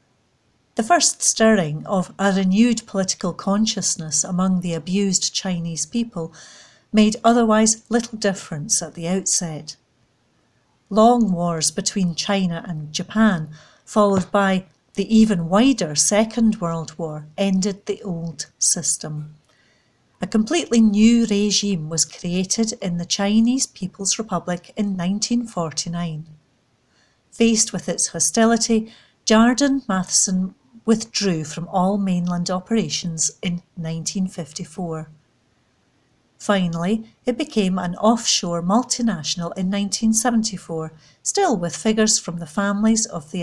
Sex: female